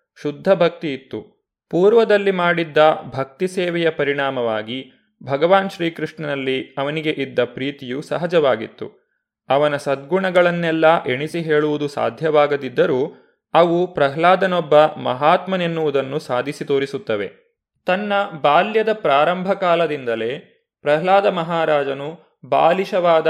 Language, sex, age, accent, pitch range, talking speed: Kannada, male, 20-39, native, 140-175 Hz, 80 wpm